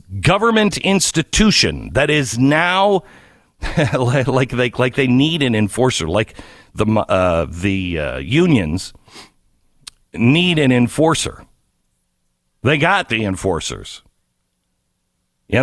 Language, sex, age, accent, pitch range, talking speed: English, male, 50-69, American, 110-155 Hz, 100 wpm